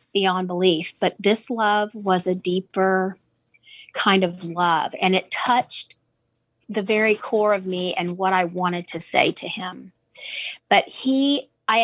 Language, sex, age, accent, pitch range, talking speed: English, female, 40-59, American, 180-215 Hz, 150 wpm